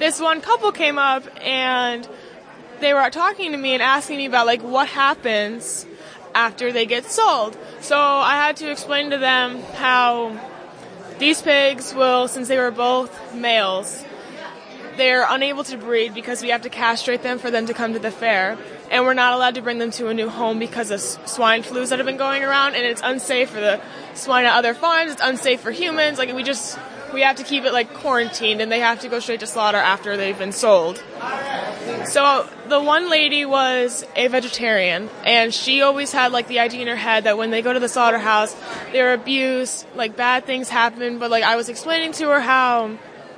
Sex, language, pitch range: female, English, 235-275 Hz